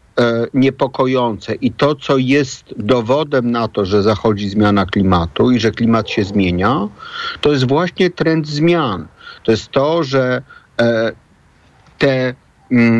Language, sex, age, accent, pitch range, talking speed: Polish, male, 50-69, native, 120-140 Hz, 125 wpm